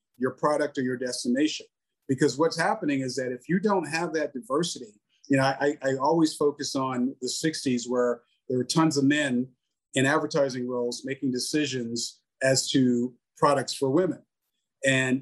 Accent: American